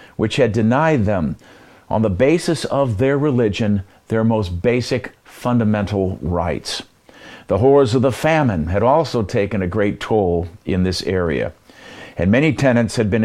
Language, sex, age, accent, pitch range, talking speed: English, male, 50-69, American, 105-135 Hz, 155 wpm